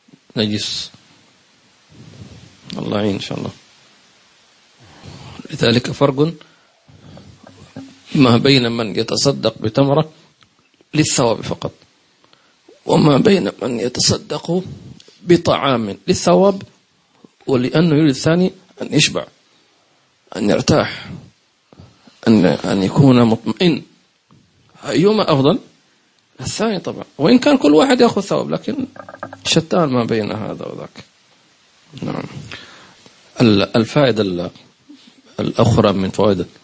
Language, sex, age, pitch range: English, male, 40-59, 110-165 Hz